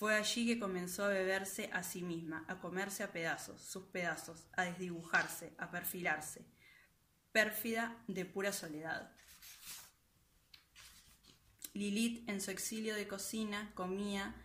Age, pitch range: 20-39, 175-200 Hz